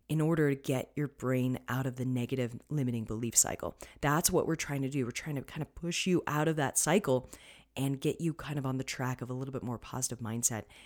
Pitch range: 130-170 Hz